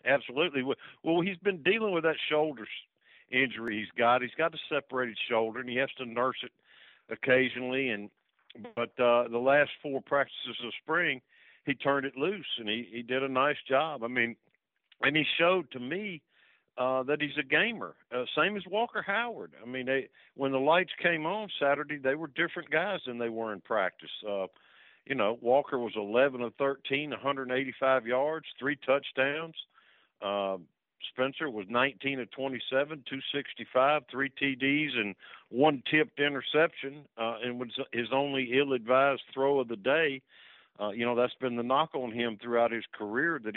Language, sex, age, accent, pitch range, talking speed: English, male, 50-69, American, 120-150 Hz, 175 wpm